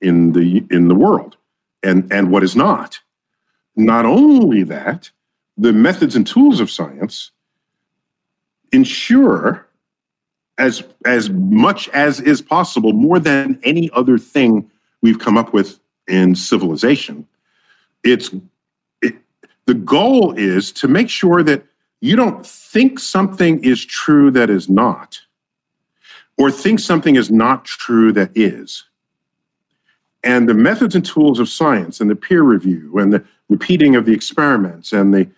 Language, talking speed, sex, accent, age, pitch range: English, 140 wpm, male, American, 50-69, 100-155 Hz